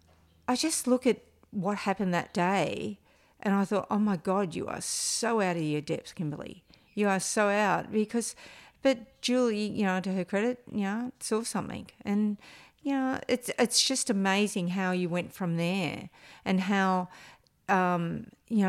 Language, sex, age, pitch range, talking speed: English, female, 50-69, 180-215 Hz, 175 wpm